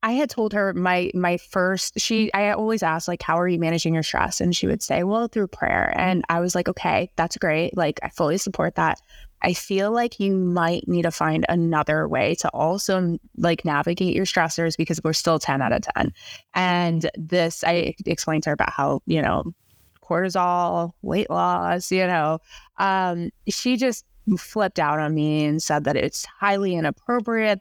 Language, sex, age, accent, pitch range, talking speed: English, female, 20-39, American, 155-205 Hz, 190 wpm